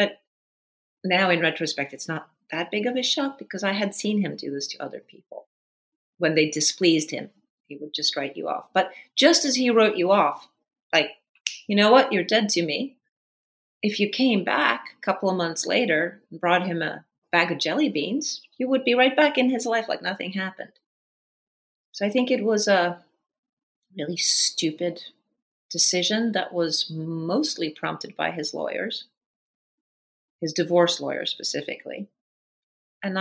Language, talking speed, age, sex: English, 170 wpm, 40-59, female